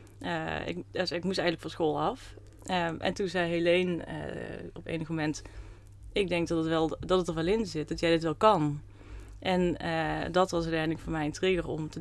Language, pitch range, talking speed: Dutch, 155-180 Hz, 225 wpm